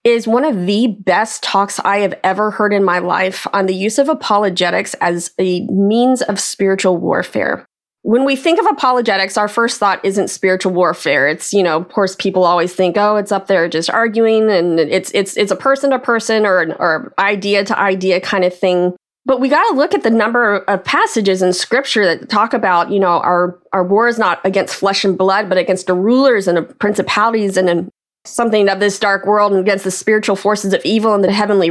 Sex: female